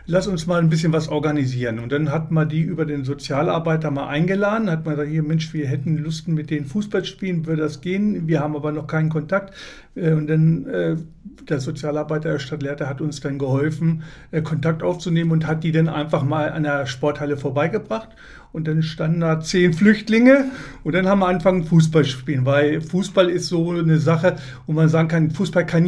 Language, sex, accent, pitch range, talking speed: German, male, German, 150-185 Hz, 195 wpm